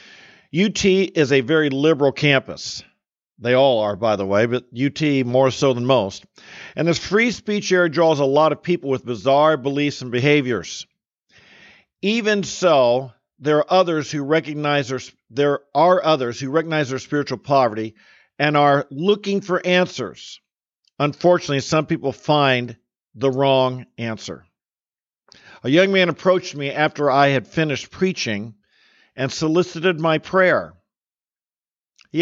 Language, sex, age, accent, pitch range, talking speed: English, male, 50-69, American, 130-165 Hz, 140 wpm